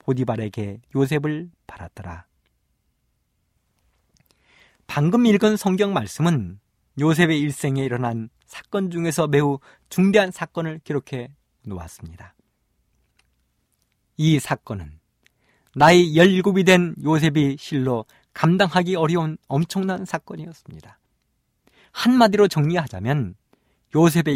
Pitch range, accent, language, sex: 115-175 Hz, native, Korean, male